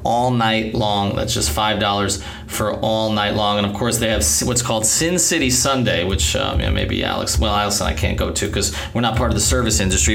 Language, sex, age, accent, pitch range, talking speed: English, male, 30-49, American, 95-125 Hz, 235 wpm